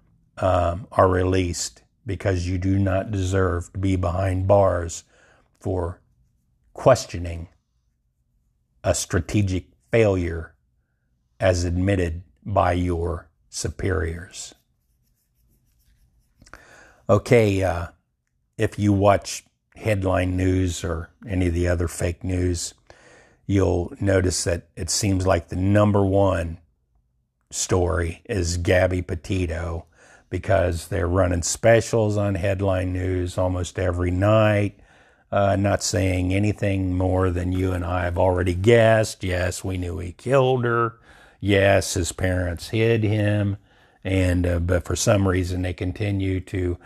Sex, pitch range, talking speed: male, 90-105 Hz, 115 wpm